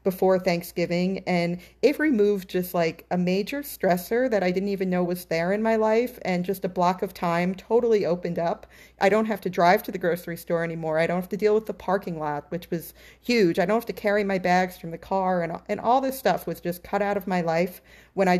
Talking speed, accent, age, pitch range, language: 245 wpm, American, 40-59, 170-200 Hz, English